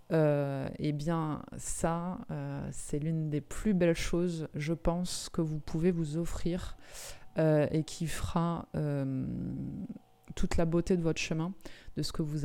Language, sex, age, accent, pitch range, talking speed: French, female, 20-39, French, 150-175 Hz, 160 wpm